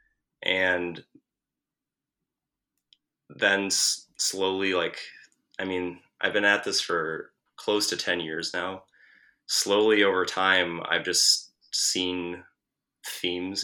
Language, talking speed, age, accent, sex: English, 100 wpm, 20-39, American, male